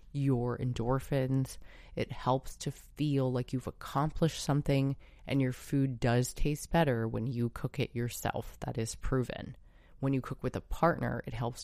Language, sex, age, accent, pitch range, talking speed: English, female, 30-49, American, 120-150 Hz, 165 wpm